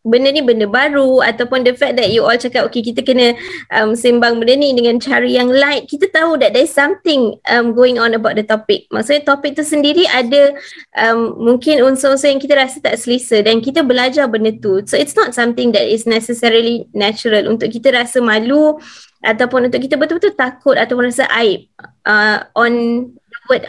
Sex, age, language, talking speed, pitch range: female, 20-39, Malay, 185 wpm, 235-285 Hz